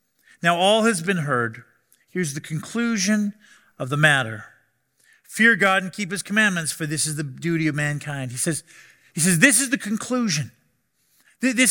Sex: male